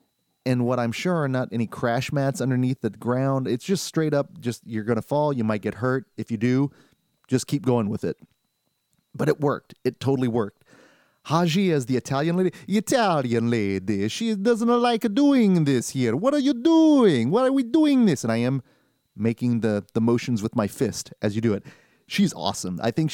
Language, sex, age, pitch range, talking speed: English, male, 30-49, 115-170 Hz, 205 wpm